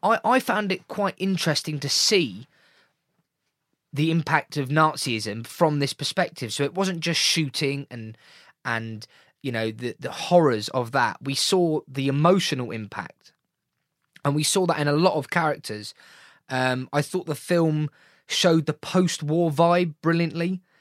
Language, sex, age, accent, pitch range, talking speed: English, male, 20-39, British, 125-160 Hz, 150 wpm